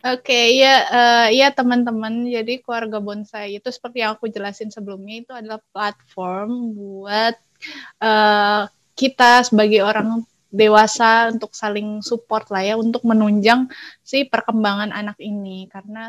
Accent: native